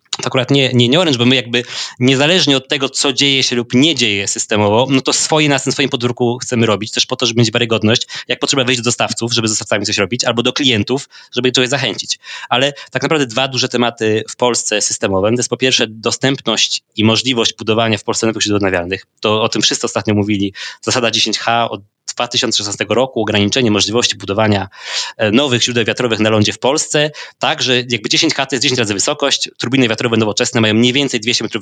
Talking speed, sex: 205 wpm, male